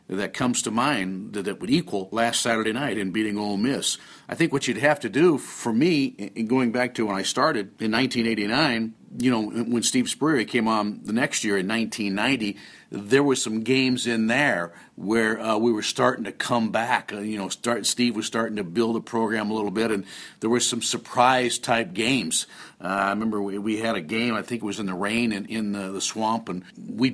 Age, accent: 50-69, American